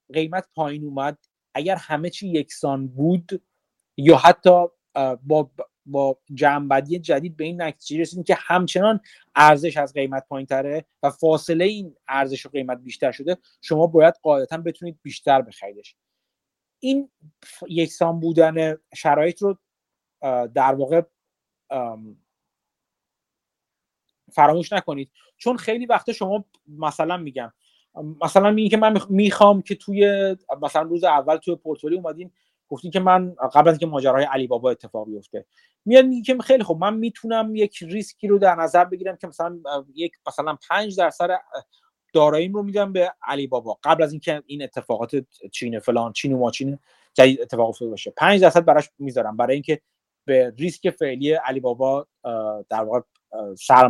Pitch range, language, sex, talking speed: 140-185 Hz, Persian, male, 140 wpm